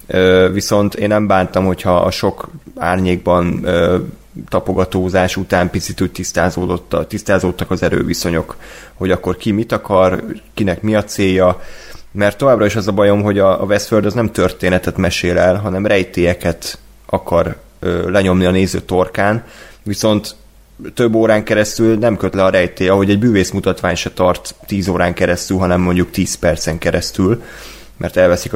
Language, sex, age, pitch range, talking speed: Hungarian, male, 20-39, 90-110 Hz, 145 wpm